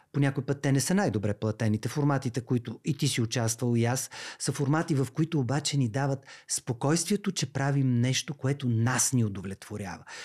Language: Bulgarian